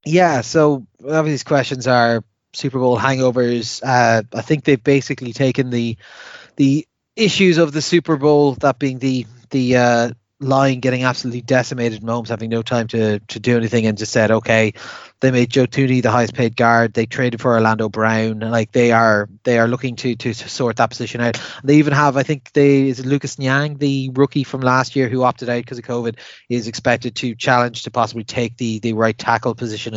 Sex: male